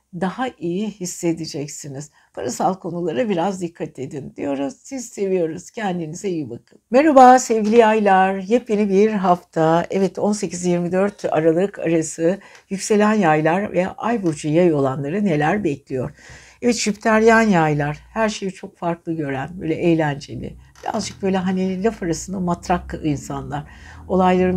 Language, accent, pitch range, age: Turkish, native, 160-215 Hz, 60-79